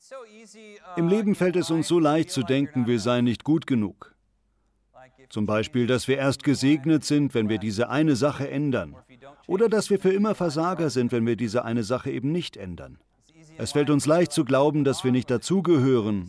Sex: male